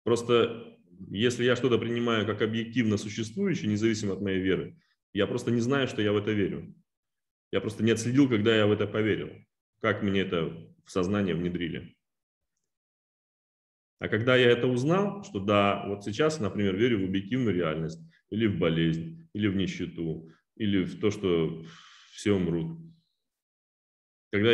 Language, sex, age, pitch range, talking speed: Russian, male, 30-49, 100-125 Hz, 155 wpm